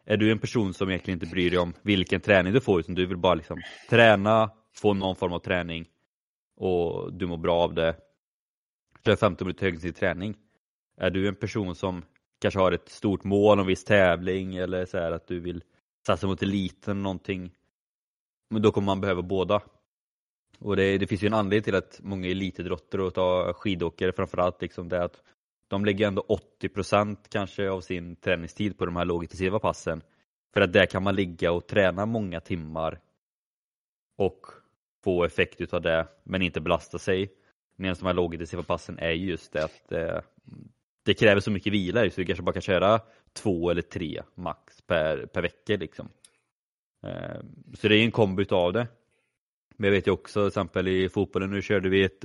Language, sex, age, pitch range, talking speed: Swedish, male, 20-39, 90-100 Hz, 190 wpm